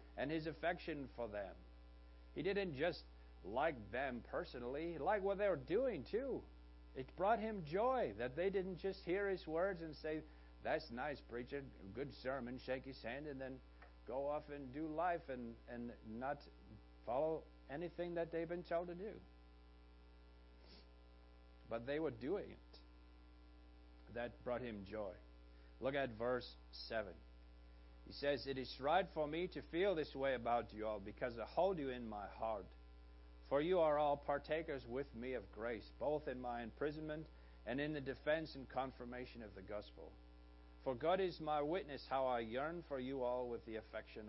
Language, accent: English, American